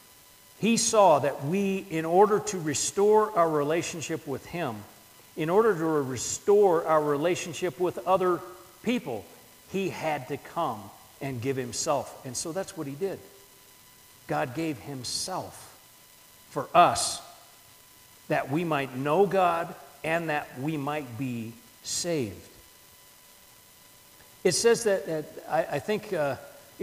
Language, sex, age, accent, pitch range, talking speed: English, male, 50-69, American, 145-205 Hz, 130 wpm